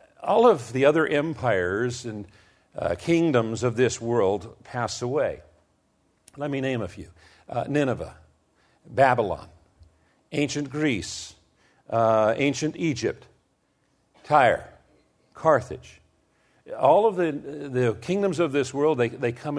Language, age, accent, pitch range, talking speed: English, 50-69, American, 110-145 Hz, 120 wpm